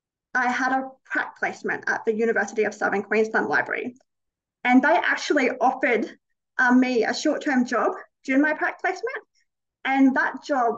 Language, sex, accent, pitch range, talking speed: English, female, Australian, 225-275 Hz, 155 wpm